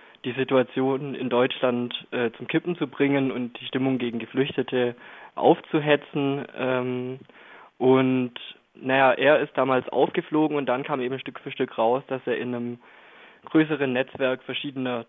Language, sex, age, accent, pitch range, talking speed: German, male, 20-39, German, 125-140 Hz, 145 wpm